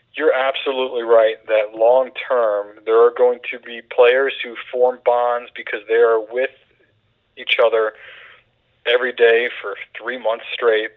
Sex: male